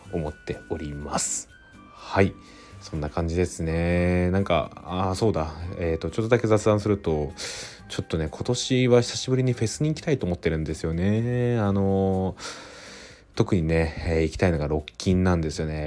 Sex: male